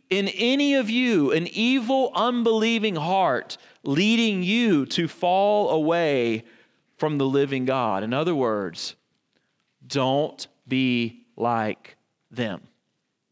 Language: English